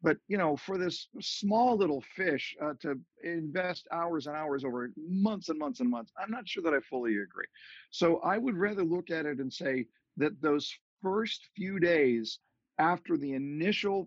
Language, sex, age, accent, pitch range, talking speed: English, male, 50-69, American, 140-200 Hz, 190 wpm